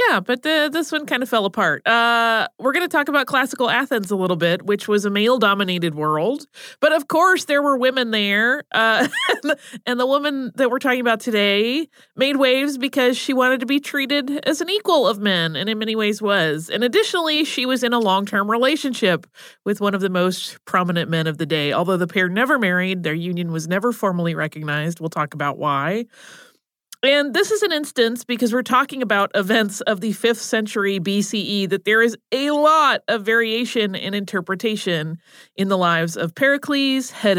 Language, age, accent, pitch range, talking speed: English, 30-49, American, 185-265 Hz, 195 wpm